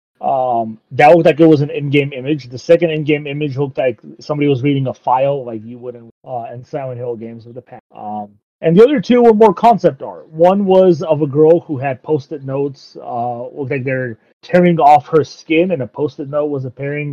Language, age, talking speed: English, 30-49, 220 wpm